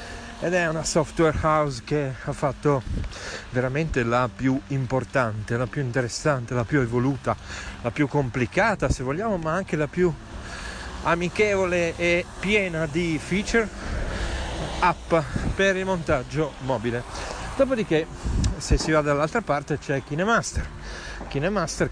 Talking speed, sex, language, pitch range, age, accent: 125 wpm, male, Italian, 120-165 Hz, 40-59, native